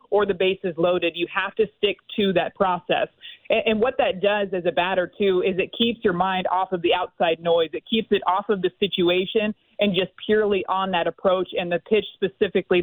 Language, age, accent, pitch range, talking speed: English, 30-49, American, 180-205 Hz, 225 wpm